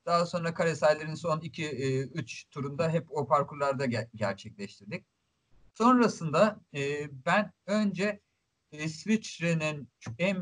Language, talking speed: English, 110 wpm